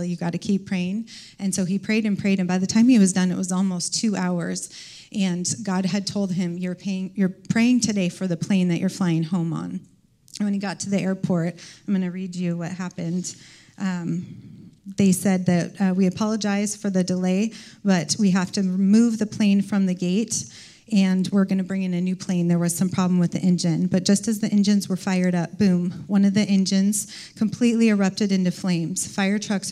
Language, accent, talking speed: English, American, 220 wpm